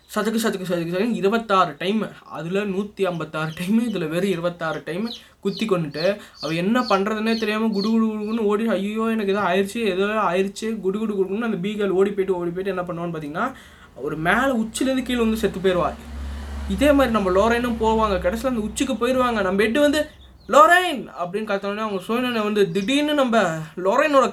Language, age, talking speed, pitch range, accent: Tamil, 20-39, 170 wpm, 165-215 Hz, native